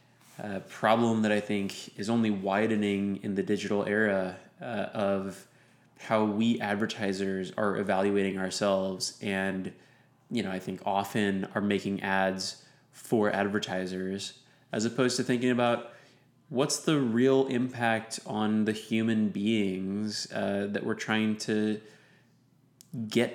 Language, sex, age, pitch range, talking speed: English, male, 20-39, 100-120 Hz, 130 wpm